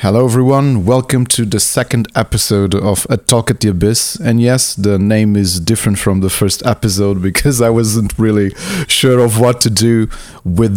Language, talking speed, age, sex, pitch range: Portuguese, 185 wpm, 30-49, male, 100-120 Hz